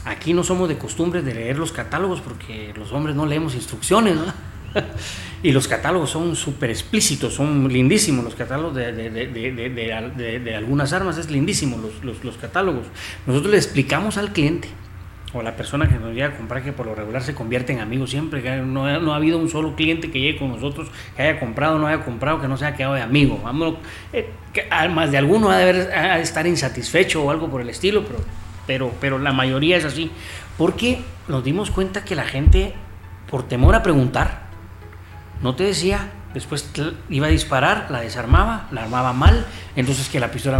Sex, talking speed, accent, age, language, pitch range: male, 210 wpm, Mexican, 40-59, Spanish, 110-150 Hz